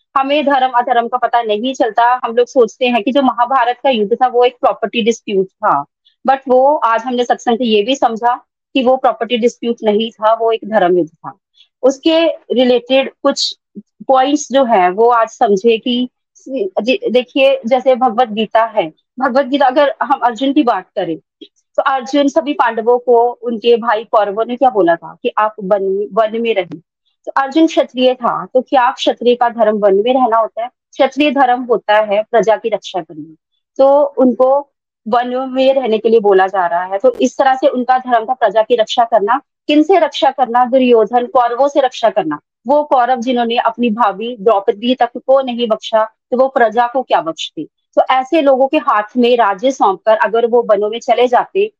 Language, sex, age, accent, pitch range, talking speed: Hindi, female, 30-49, native, 225-270 Hz, 190 wpm